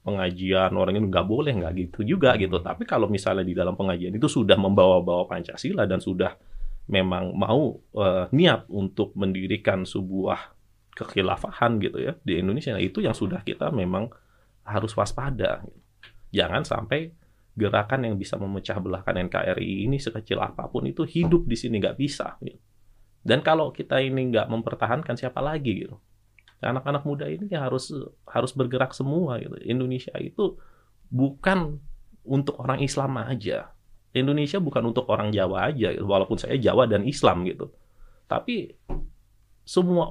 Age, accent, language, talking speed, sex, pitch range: 30-49, native, Indonesian, 145 wpm, male, 100-135 Hz